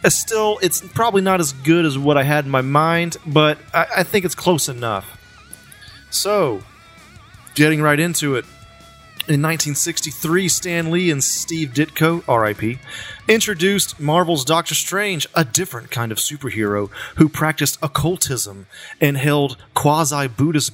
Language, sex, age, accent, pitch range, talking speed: English, male, 30-49, American, 120-160 Hz, 140 wpm